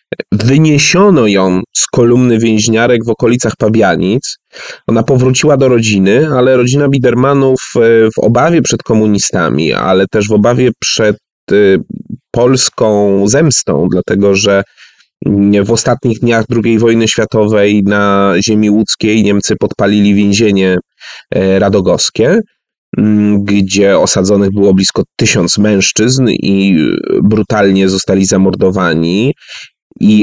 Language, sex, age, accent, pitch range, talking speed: Polish, male, 30-49, native, 100-120 Hz, 105 wpm